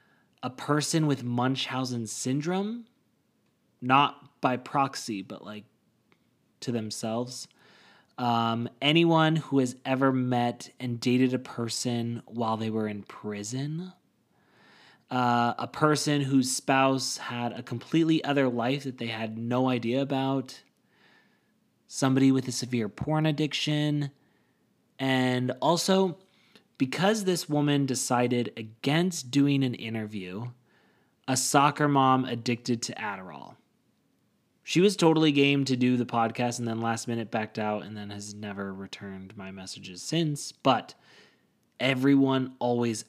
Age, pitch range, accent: 20-39, 115-150 Hz, American